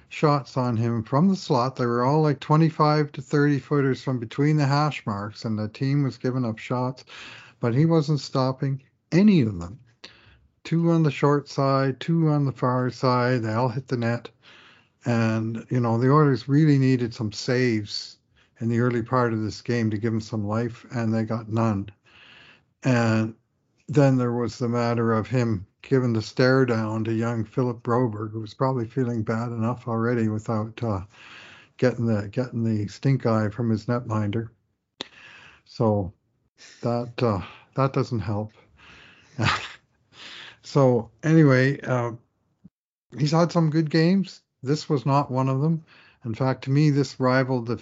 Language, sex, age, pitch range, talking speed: English, male, 50-69, 115-135 Hz, 170 wpm